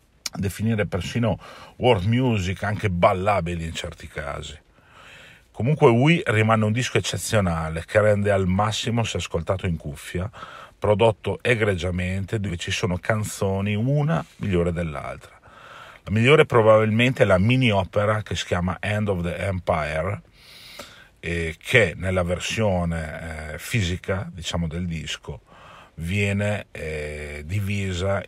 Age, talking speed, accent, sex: 40-59, 125 wpm, native, male